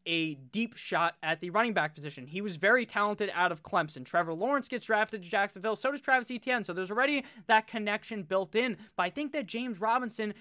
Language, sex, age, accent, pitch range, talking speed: English, male, 20-39, American, 185-245 Hz, 220 wpm